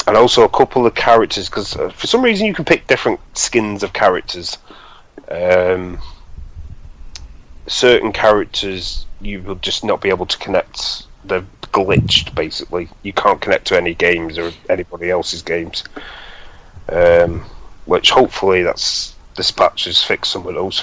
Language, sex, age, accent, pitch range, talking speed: English, male, 30-49, British, 85-105 Hz, 150 wpm